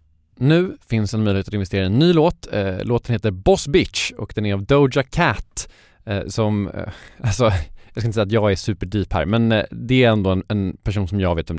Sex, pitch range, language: male, 95-125 Hz, Swedish